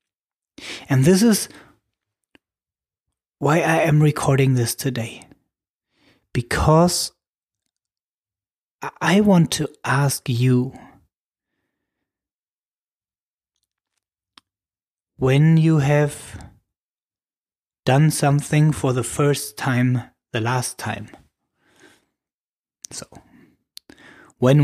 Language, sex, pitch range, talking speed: English, male, 130-175 Hz, 70 wpm